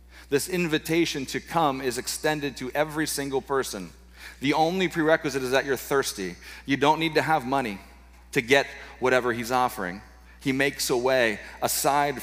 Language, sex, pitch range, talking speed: English, male, 120-160 Hz, 160 wpm